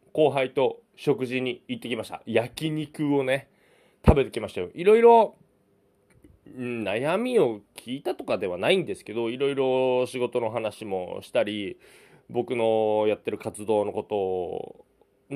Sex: male